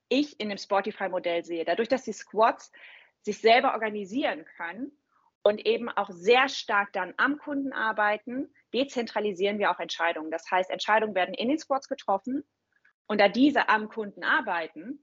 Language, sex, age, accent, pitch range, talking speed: German, female, 30-49, German, 190-240 Hz, 160 wpm